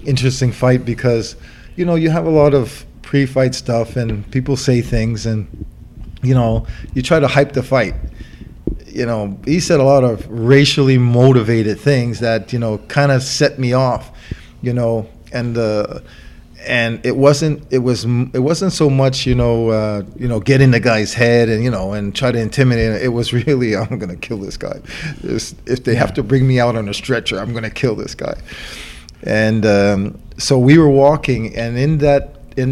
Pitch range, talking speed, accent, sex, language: 110-135 Hz, 195 wpm, American, male, English